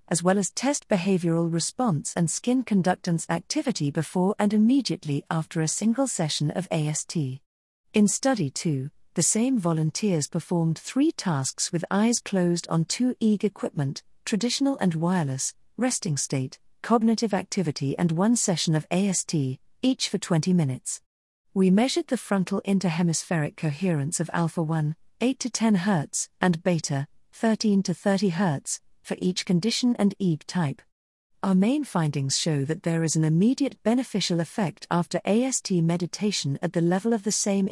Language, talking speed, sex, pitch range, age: English, 155 wpm, female, 160-210 Hz, 50-69